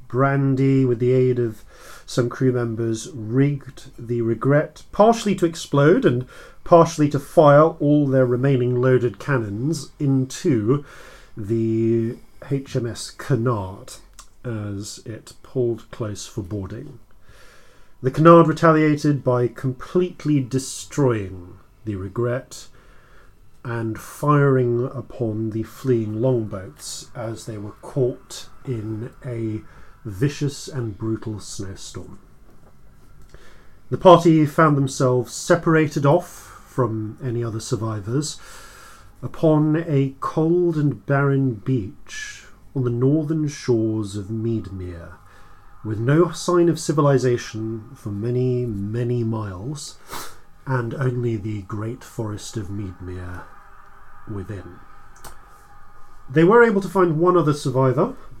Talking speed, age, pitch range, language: 105 wpm, 40-59, 110-145 Hz, English